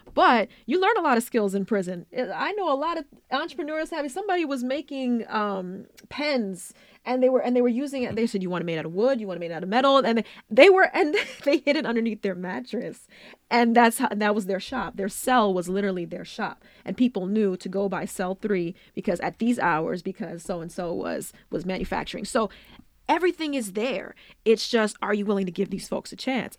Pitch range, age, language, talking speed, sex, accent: 190-250 Hz, 20-39, English, 230 wpm, female, American